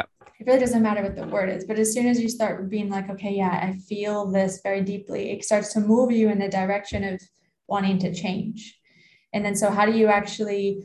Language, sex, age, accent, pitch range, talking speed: English, female, 20-39, American, 195-220 Hz, 230 wpm